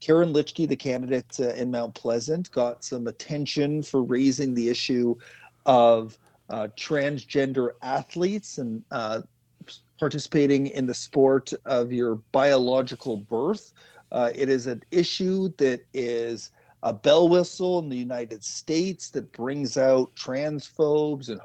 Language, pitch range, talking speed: English, 125-150 Hz, 130 wpm